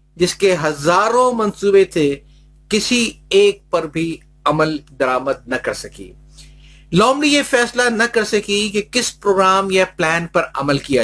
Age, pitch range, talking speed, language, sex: 50-69, 150-205 Hz, 150 wpm, Urdu, male